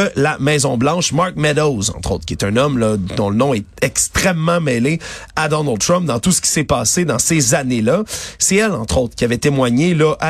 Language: French